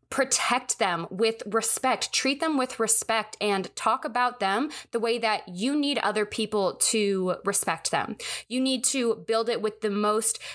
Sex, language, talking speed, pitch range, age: female, English, 170 wpm, 200-245 Hz, 20-39